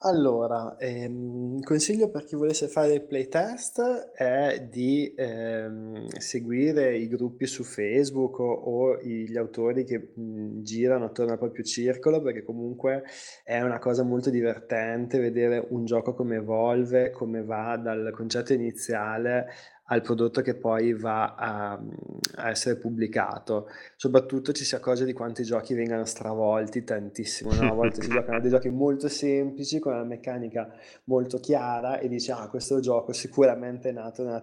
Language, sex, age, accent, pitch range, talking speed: Italian, male, 20-39, native, 110-125 Hz, 155 wpm